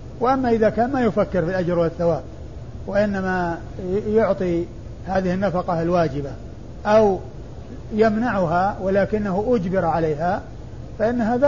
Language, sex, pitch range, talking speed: Arabic, male, 170-210 Hz, 105 wpm